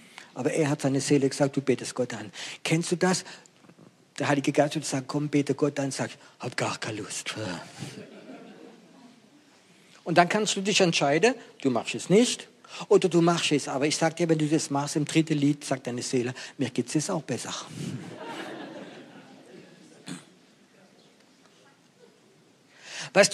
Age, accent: 50-69, German